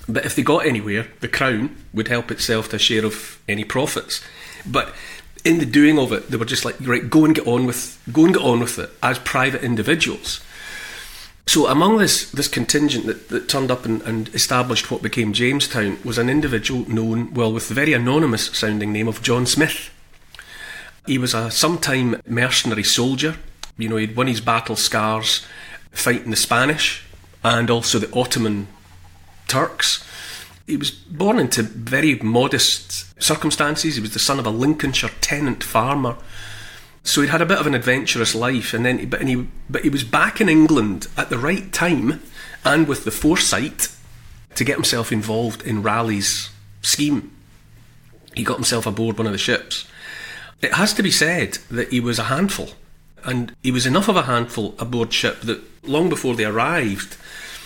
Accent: British